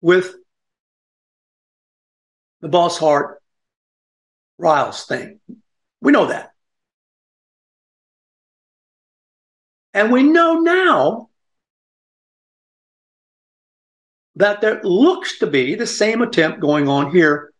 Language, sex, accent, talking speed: English, male, American, 80 wpm